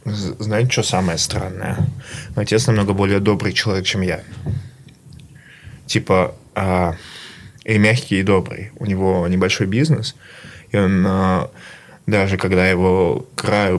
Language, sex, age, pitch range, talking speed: Russian, male, 20-39, 95-130 Hz, 125 wpm